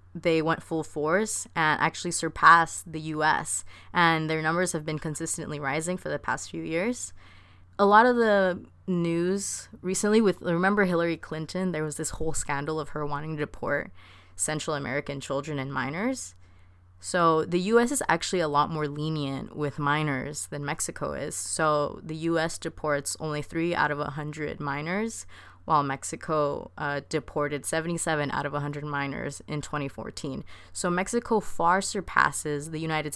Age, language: 20-39, English